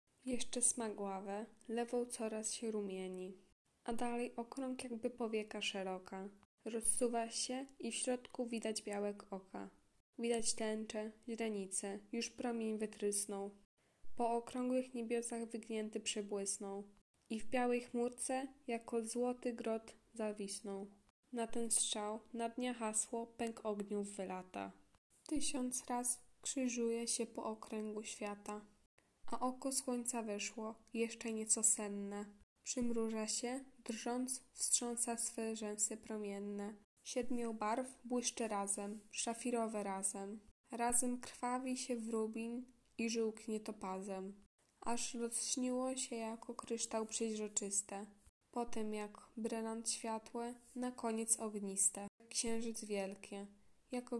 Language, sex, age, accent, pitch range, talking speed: Polish, female, 10-29, native, 210-240 Hz, 110 wpm